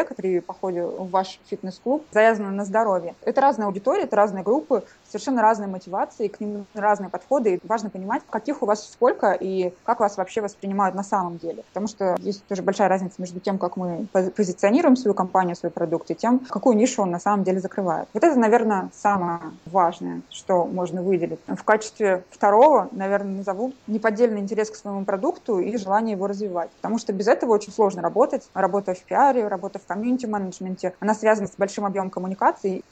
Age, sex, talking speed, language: 20-39, female, 185 wpm, Russian